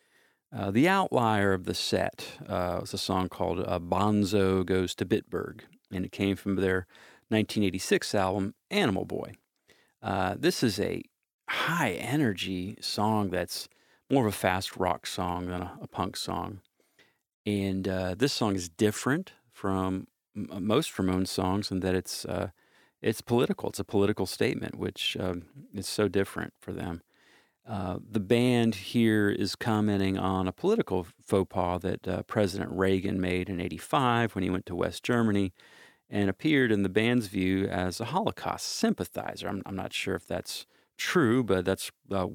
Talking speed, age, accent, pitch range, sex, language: 160 wpm, 40-59, American, 90-105 Hz, male, English